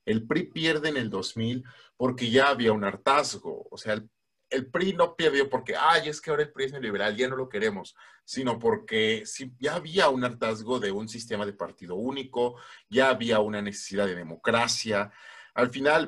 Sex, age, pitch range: male, 40-59, 115-150 Hz